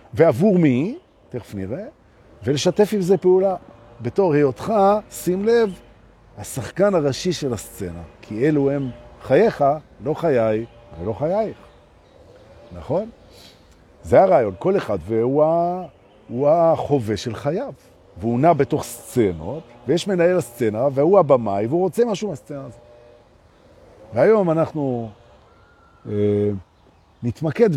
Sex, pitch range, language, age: male, 105-160 Hz, Hebrew, 50-69